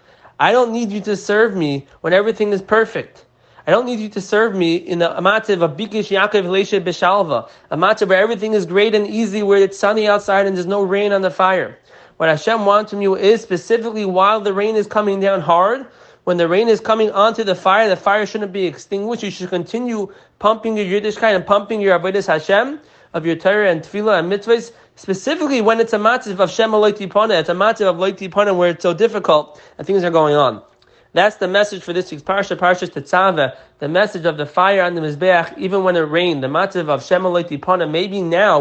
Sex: male